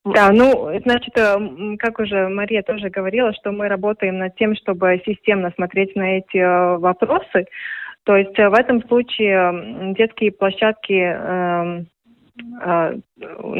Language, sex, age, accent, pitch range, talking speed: Russian, female, 20-39, native, 185-225 Hz, 130 wpm